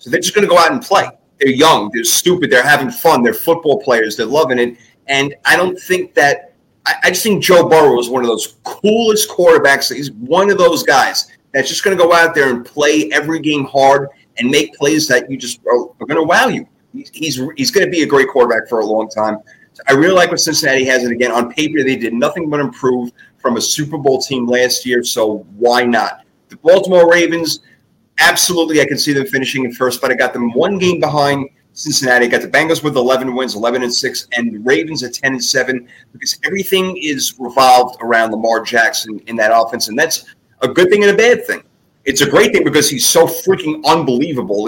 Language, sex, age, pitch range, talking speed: English, male, 30-49, 120-165 Hz, 230 wpm